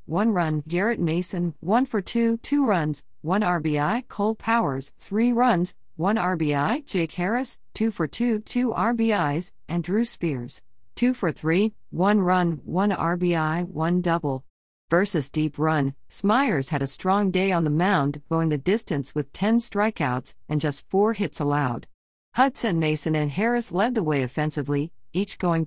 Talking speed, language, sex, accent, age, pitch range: 160 wpm, English, female, American, 40-59, 150-210 Hz